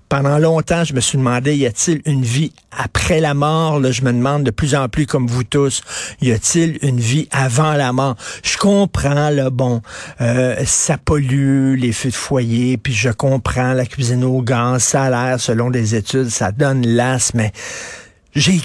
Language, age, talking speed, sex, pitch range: French, 50-69, 185 wpm, male, 120-150 Hz